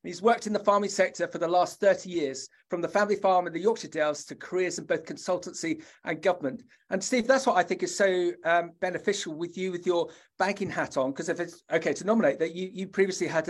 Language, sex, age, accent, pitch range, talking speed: English, male, 40-59, British, 170-200 Hz, 240 wpm